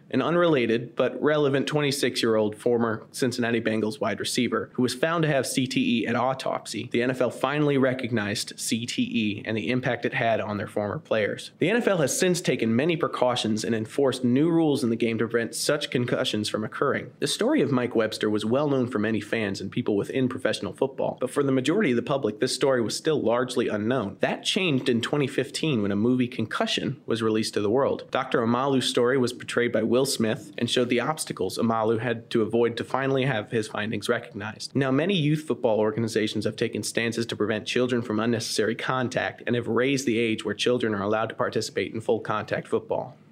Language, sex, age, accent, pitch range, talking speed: English, male, 30-49, American, 110-130 Hz, 200 wpm